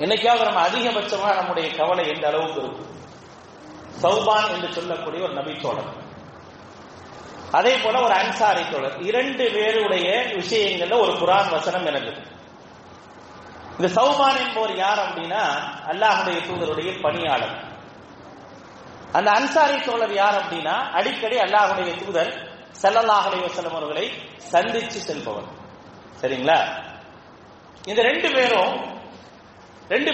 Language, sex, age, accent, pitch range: English, male, 30-49, Indian, 170-225 Hz